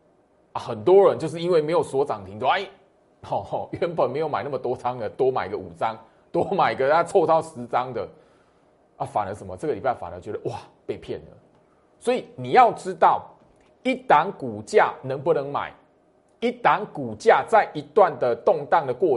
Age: 30-49